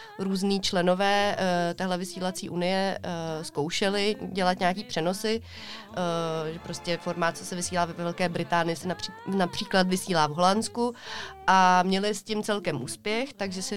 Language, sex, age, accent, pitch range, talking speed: Czech, female, 30-49, native, 175-195 Hz, 155 wpm